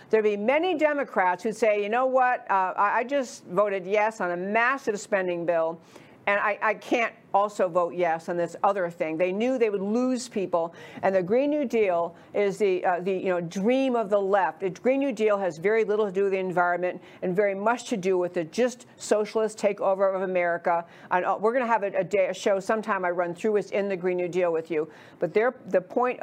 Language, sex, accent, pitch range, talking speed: English, female, American, 180-225 Hz, 230 wpm